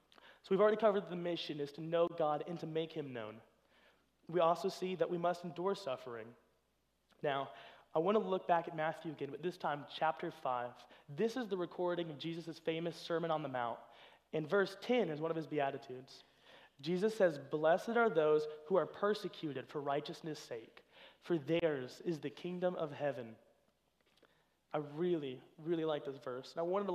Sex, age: male, 30-49